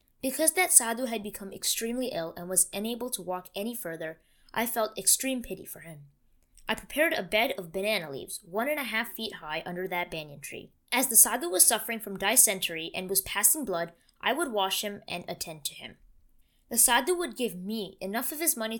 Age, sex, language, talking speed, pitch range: 20-39, female, English, 210 wpm, 185-255 Hz